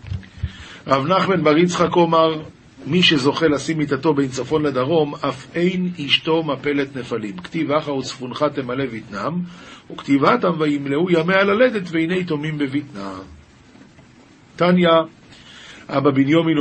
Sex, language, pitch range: male, Hebrew, 135-185 Hz